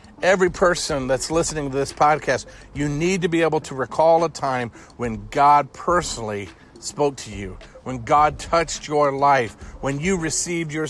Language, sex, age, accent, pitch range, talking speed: English, male, 50-69, American, 135-175 Hz, 170 wpm